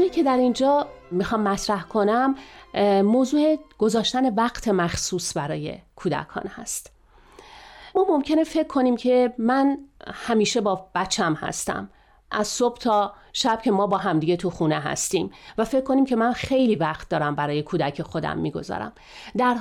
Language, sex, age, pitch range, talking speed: Persian, female, 40-59, 185-250 Hz, 145 wpm